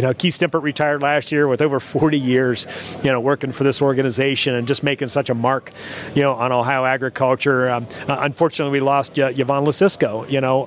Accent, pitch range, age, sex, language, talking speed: American, 135-160 Hz, 40-59, male, English, 215 wpm